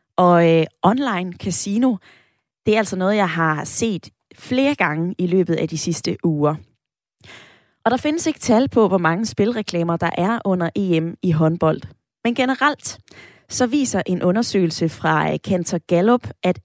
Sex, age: female, 20-39